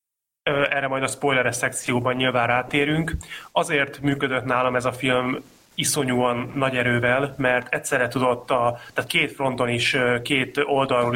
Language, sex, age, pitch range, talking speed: Hungarian, male, 30-49, 120-145 Hz, 140 wpm